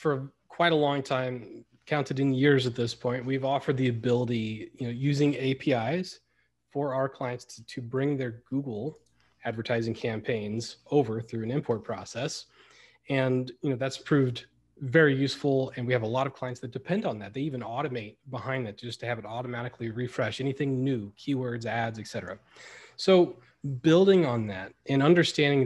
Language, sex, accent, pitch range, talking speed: English, male, American, 120-145 Hz, 175 wpm